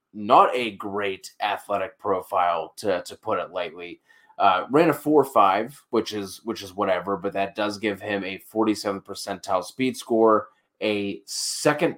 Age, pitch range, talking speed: 20-39, 95-110 Hz, 165 wpm